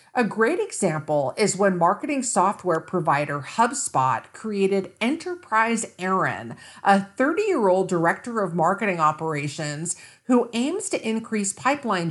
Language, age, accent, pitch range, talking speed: English, 50-69, American, 170-250 Hz, 115 wpm